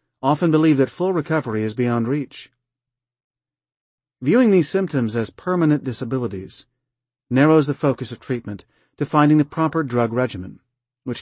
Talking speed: 140 wpm